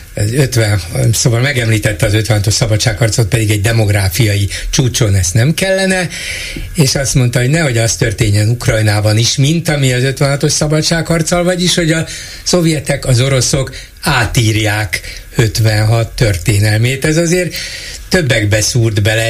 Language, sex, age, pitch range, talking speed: Hungarian, male, 60-79, 110-140 Hz, 130 wpm